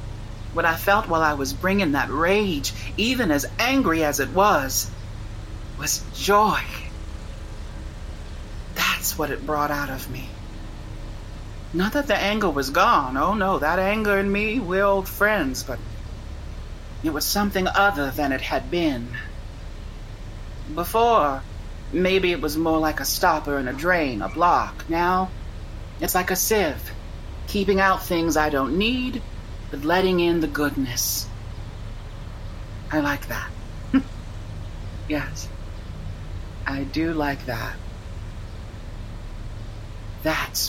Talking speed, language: 125 wpm, English